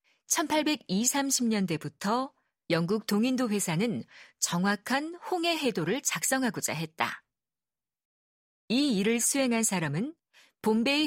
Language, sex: Korean, female